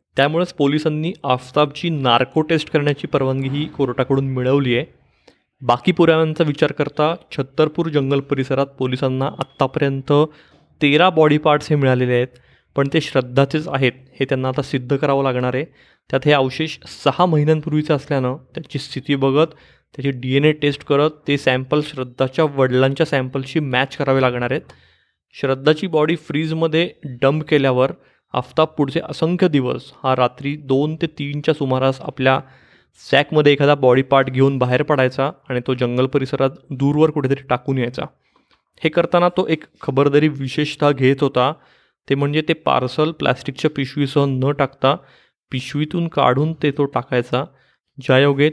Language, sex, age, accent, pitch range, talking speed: Marathi, male, 20-39, native, 130-150 Hz, 135 wpm